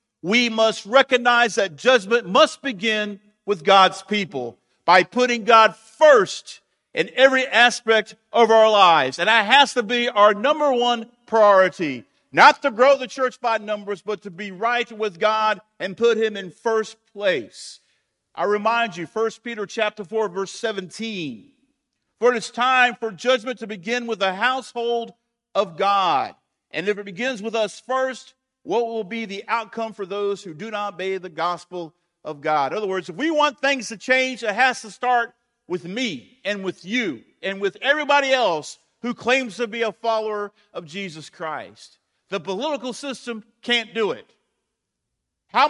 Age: 50-69